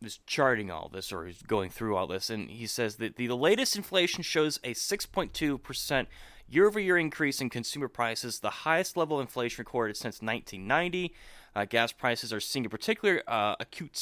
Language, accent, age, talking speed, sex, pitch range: English, American, 20-39, 195 wpm, male, 125-175 Hz